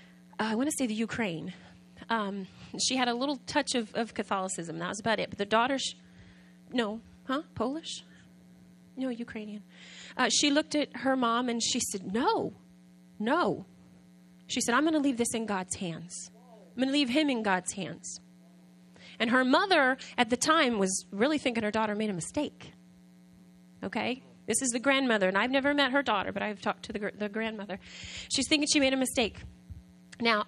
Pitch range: 180-250 Hz